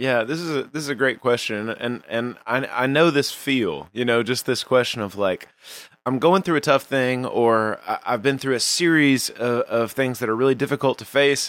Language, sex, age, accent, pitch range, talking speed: English, male, 30-49, American, 115-150 Hz, 235 wpm